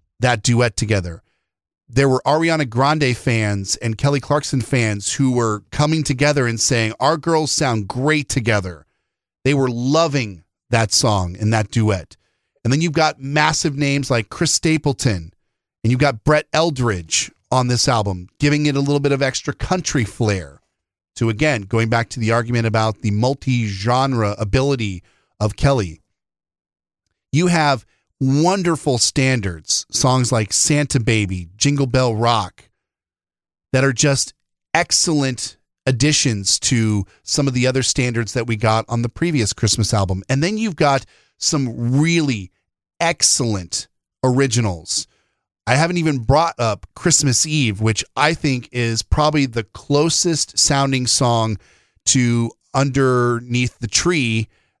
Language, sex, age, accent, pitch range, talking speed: English, male, 40-59, American, 110-140 Hz, 140 wpm